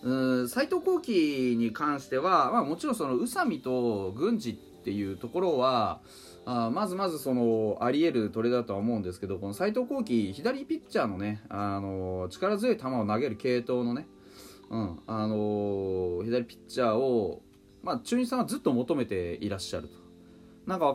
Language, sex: Japanese, male